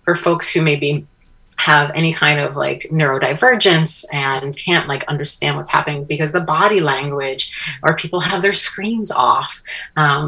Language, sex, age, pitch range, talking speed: English, female, 30-49, 145-180 Hz, 165 wpm